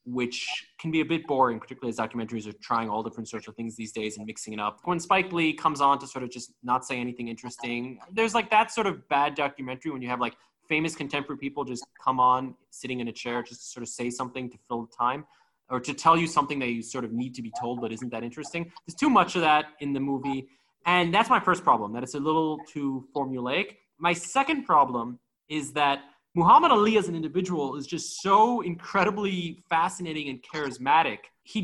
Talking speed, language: 230 wpm, English